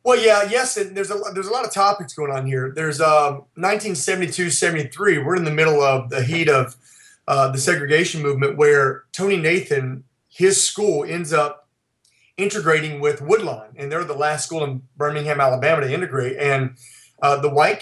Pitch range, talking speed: 135-170 Hz, 180 wpm